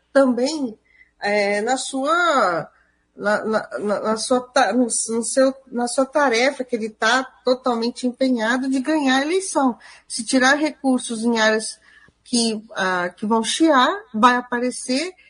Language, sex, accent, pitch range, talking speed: Portuguese, female, Brazilian, 225-270 Hz, 145 wpm